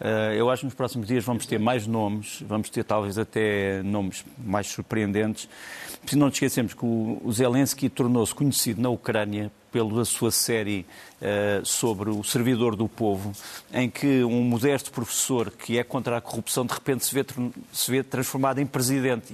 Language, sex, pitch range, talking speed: Portuguese, male, 120-145 Hz, 165 wpm